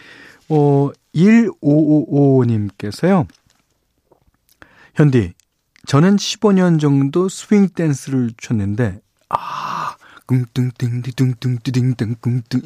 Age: 40-59